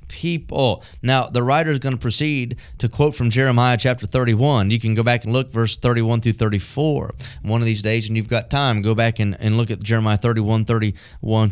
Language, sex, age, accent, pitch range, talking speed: English, male, 30-49, American, 115-145 Hz, 215 wpm